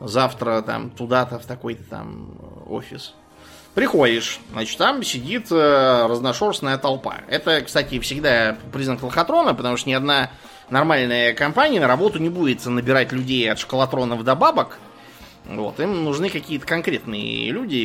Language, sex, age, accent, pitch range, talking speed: Russian, male, 20-39, native, 125-150 Hz, 135 wpm